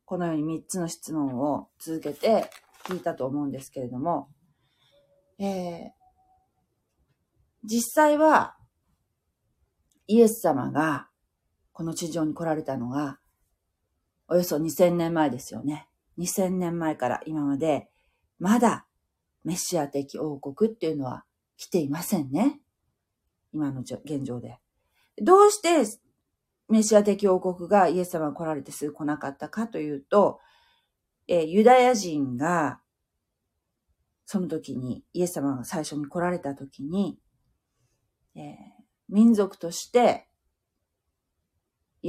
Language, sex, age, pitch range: Japanese, female, 40-59, 145-205 Hz